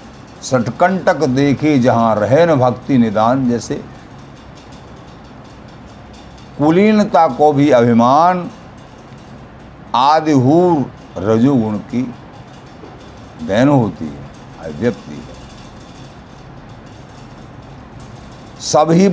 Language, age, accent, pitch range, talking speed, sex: Hindi, 60-79, native, 115-155 Hz, 65 wpm, male